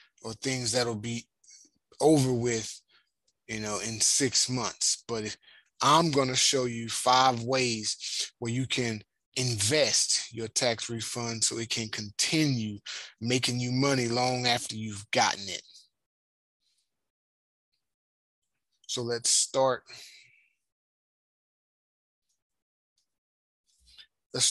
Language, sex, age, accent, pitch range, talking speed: English, male, 20-39, American, 115-135 Hz, 105 wpm